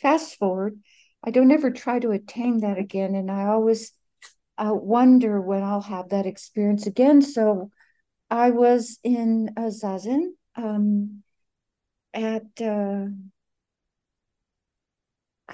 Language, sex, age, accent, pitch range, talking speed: English, female, 60-79, American, 205-250 Hz, 115 wpm